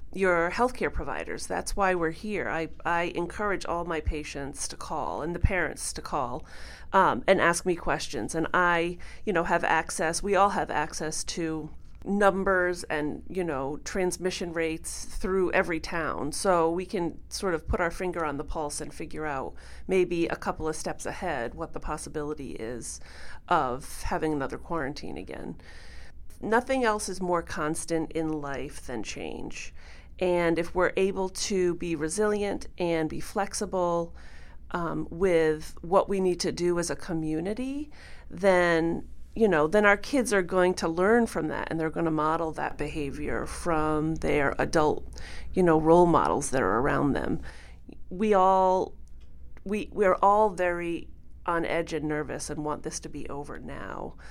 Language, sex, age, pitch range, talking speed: English, female, 30-49, 155-185 Hz, 165 wpm